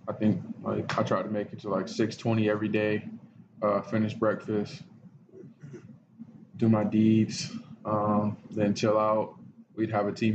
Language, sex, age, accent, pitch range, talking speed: English, male, 20-39, American, 105-110 Hz, 155 wpm